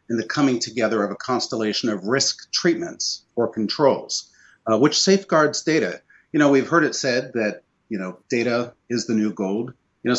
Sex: male